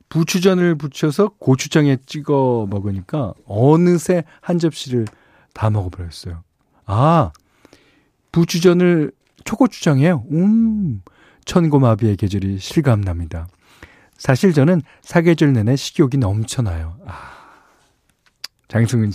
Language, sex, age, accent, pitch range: Korean, male, 40-59, native, 110-185 Hz